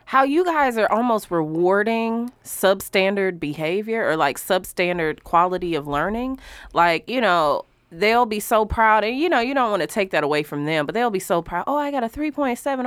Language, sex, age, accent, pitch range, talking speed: English, female, 20-39, American, 165-230 Hz, 200 wpm